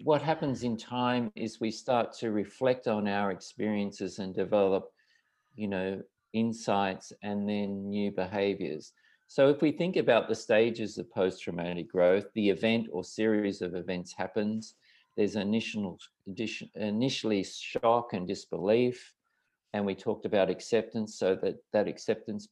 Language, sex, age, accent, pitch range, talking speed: English, male, 50-69, Australian, 100-115 Hz, 140 wpm